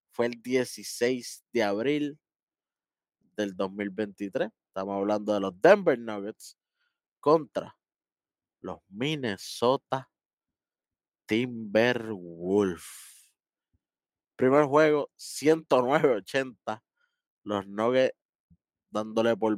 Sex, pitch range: male, 105-140 Hz